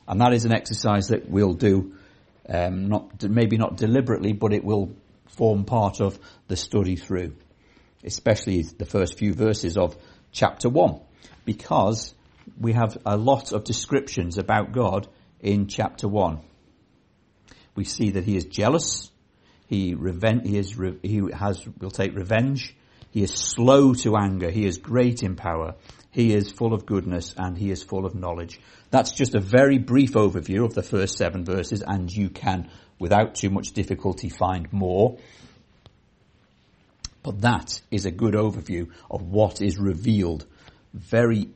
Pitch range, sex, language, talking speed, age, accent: 90-110 Hz, male, English, 160 wpm, 50-69, British